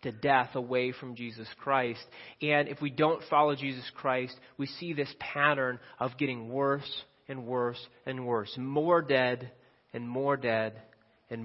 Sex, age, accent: male, 30-49, American